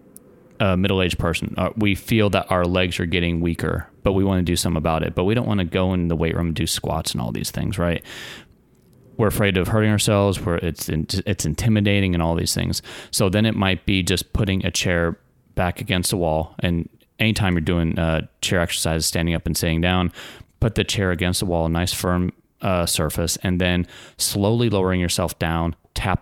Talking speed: 215 wpm